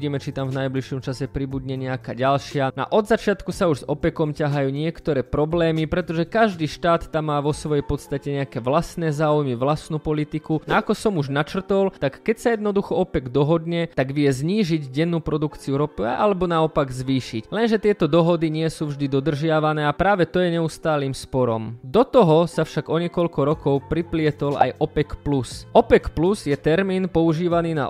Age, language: 20-39, Slovak